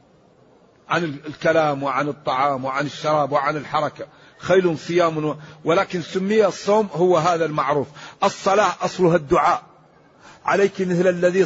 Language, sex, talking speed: Arabic, male, 115 wpm